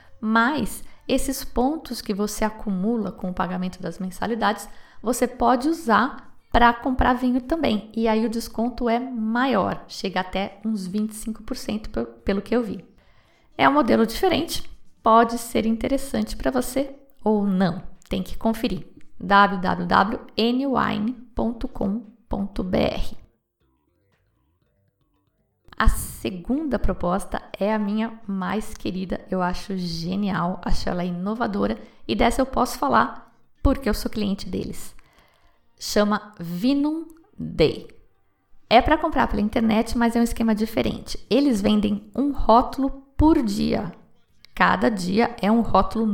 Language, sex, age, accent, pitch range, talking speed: Portuguese, female, 20-39, Brazilian, 200-250 Hz, 125 wpm